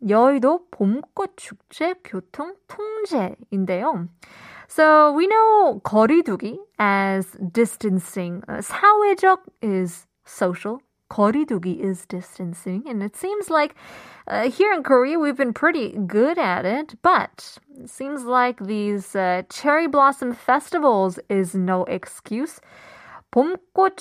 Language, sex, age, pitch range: Korean, female, 20-39, 195-300 Hz